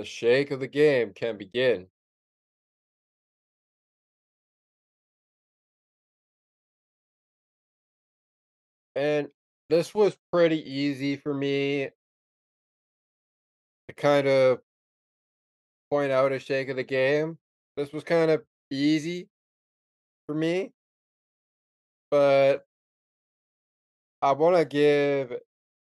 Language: English